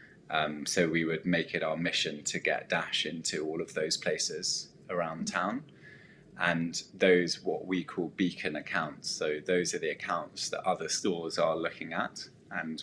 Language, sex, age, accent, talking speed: English, male, 20-39, British, 175 wpm